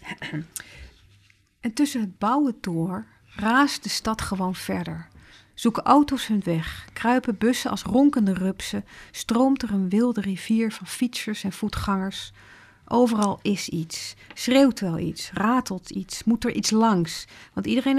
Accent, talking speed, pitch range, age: Dutch, 140 wpm, 170-230 Hz, 40-59